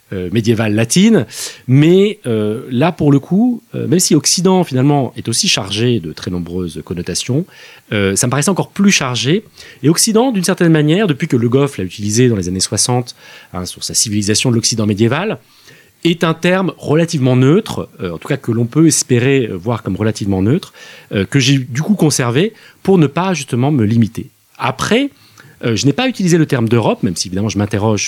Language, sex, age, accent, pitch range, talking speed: French, male, 30-49, French, 105-165 Hz, 200 wpm